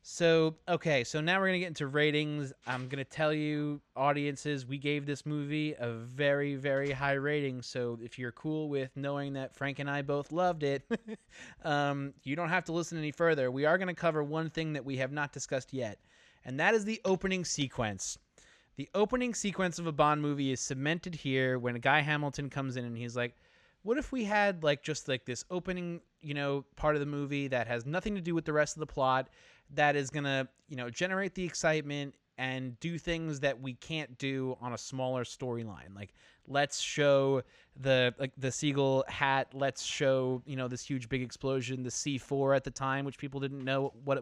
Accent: American